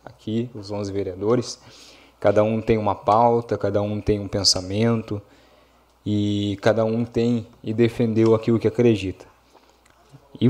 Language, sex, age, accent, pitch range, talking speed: Portuguese, male, 20-39, Brazilian, 105-120 Hz, 135 wpm